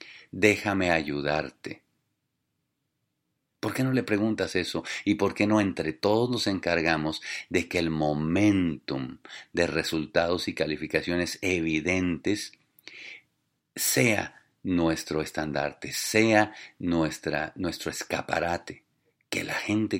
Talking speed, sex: 105 wpm, male